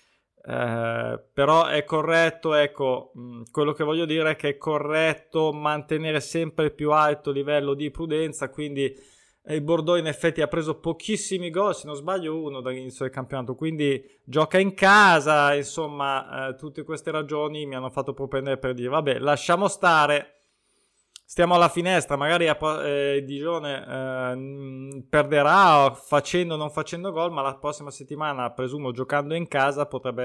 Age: 20-39